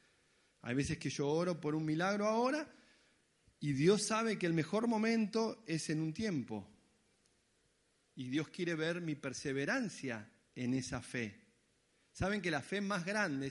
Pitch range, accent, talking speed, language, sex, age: 135-200 Hz, Argentinian, 155 wpm, Spanish, male, 40-59